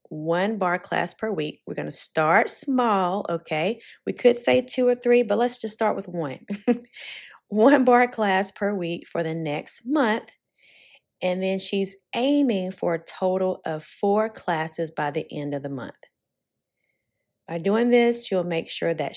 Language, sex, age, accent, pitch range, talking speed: English, female, 30-49, American, 165-225 Hz, 170 wpm